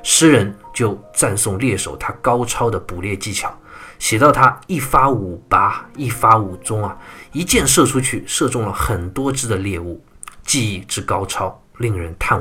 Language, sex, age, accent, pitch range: Chinese, male, 20-39, native, 95-135 Hz